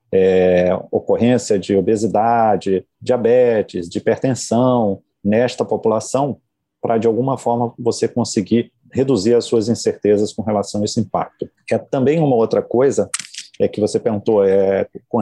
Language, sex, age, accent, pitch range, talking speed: Portuguese, male, 40-59, Brazilian, 100-125 Hz, 125 wpm